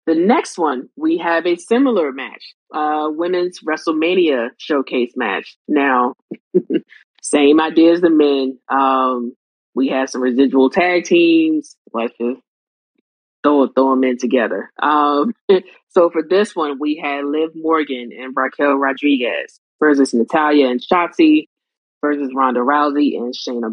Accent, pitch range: American, 130-155 Hz